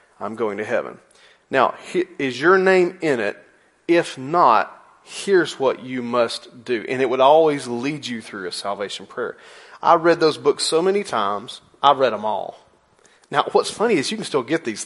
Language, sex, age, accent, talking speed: English, male, 30-49, American, 190 wpm